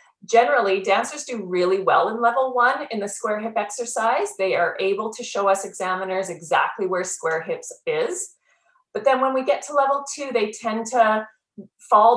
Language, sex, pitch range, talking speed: English, female, 185-250 Hz, 180 wpm